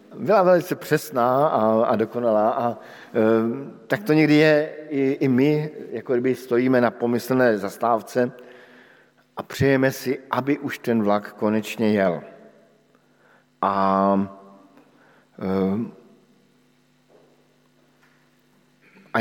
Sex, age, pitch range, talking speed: male, 50-69, 105-130 Hz, 95 wpm